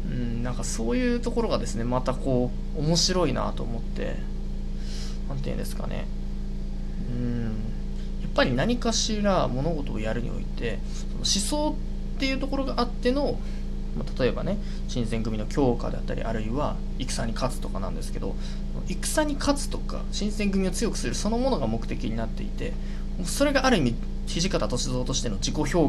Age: 20-39